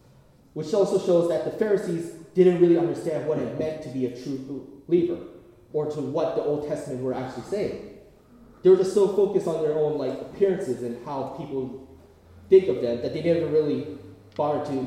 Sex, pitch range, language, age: male, 130-185 Hz, Korean, 20-39